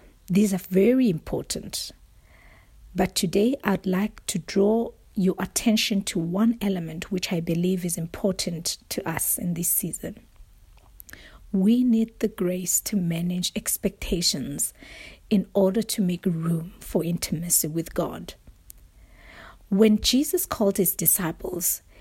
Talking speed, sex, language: 125 wpm, female, English